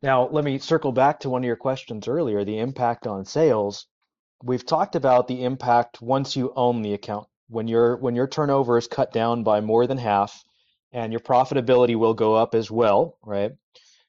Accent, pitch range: American, 115-135 Hz